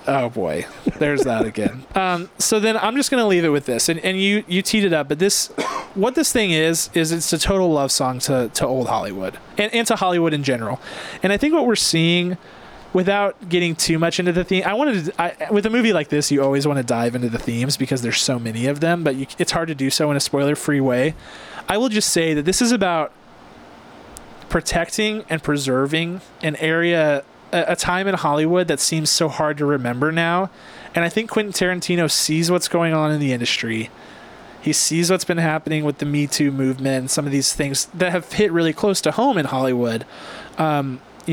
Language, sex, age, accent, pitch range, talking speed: English, male, 30-49, American, 145-180 Hz, 225 wpm